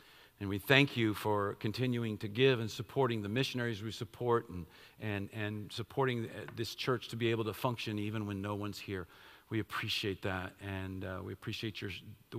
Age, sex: 50-69, male